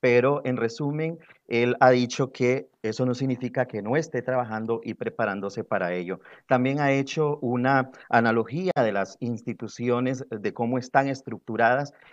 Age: 30-49